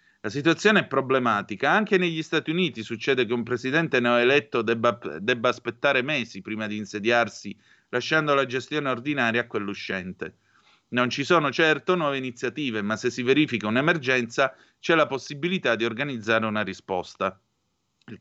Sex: male